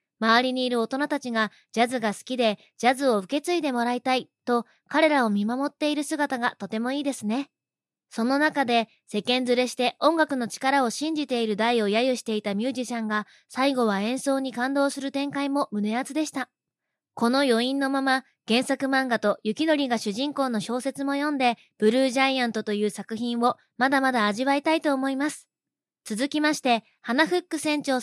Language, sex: Japanese, female